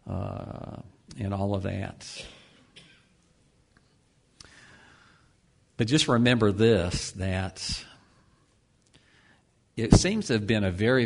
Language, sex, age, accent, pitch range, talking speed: English, male, 50-69, American, 100-115 Hz, 90 wpm